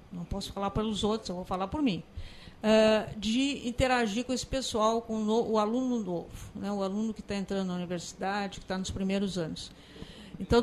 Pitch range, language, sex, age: 205-270 Hz, Portuguese, female, 50-69